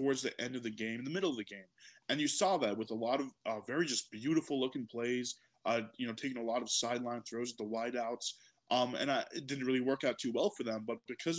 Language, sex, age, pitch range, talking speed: English, male, 20-39, 120-160 Hz, 275 wpm